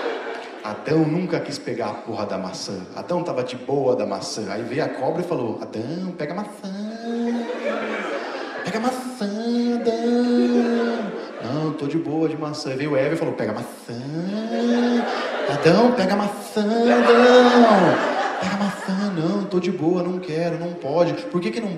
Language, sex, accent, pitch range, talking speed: Portuguese, male, Brazilian, 160-235 Hz, 155 wpm